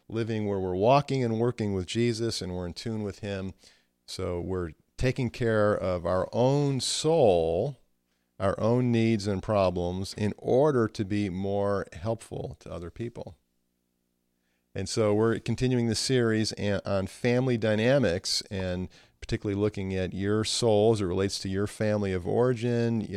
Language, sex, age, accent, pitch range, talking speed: English, male, 40-59, American, 90-115 Hz, 155 wpm